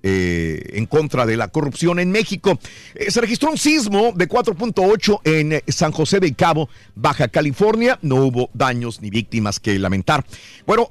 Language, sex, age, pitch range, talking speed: Spanish, male, 50-69, 120-180 Hz, 165 wpm